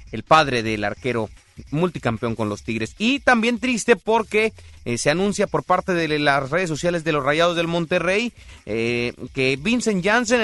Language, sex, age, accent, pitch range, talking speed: Spanish, male, 30-49, Mexican, 130-190 Hz, 170 wpm